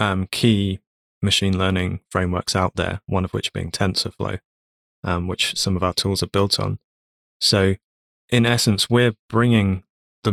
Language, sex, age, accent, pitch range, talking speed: English, male, 20-39, British, 90-110 Hz, 155 wpm